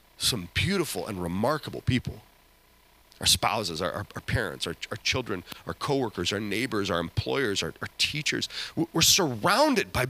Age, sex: 30-49, male